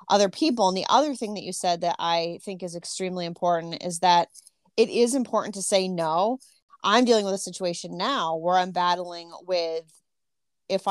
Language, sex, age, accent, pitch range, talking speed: English, female, 30-49, American, 175-205 Hz, 185 wpm